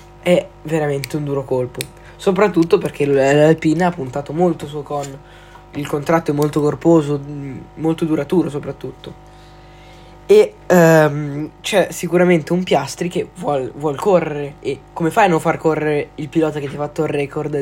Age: 10-29